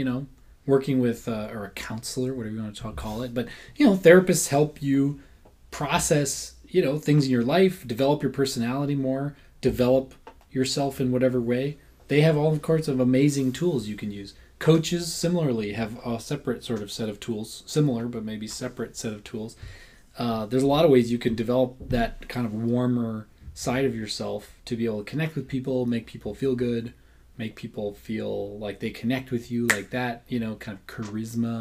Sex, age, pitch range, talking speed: male, 20-39, 110-135 Hz, 200 wpm